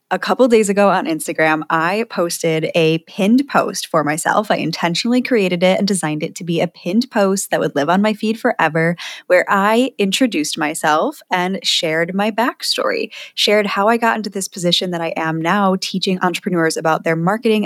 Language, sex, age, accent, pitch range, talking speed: English, female, 10-29, American, 170-225 Hz, 190 wpm